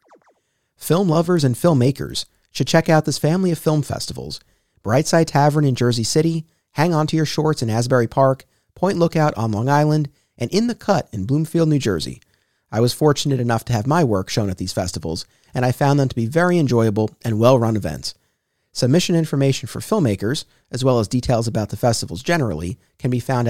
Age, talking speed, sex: 30-49, 195 wpm, male